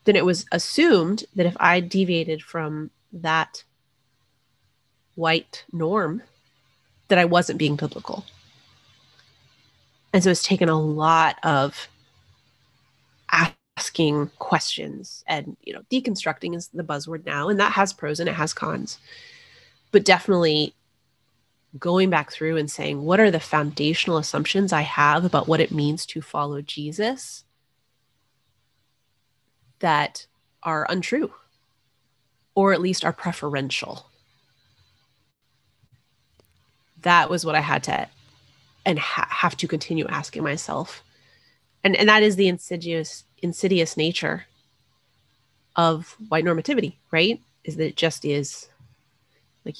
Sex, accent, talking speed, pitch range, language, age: female, American, 120 wpm, 130-175 Hz, English, 30-49